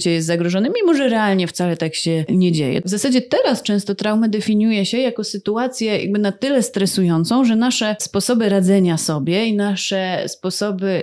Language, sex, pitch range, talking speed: Polish, female, 180-225 Hz, 165 wpm